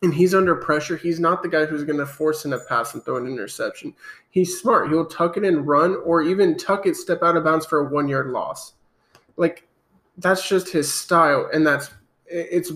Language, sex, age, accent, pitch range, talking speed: English, male, 20-39, American, 155-195 Hz, 210 wpm